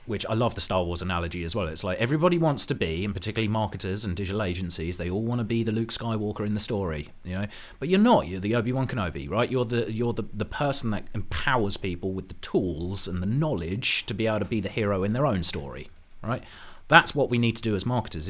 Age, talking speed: 30-49, 255 wpm